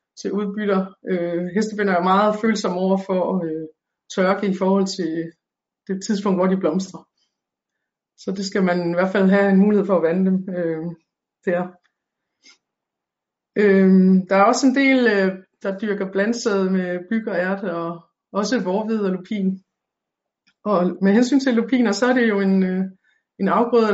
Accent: native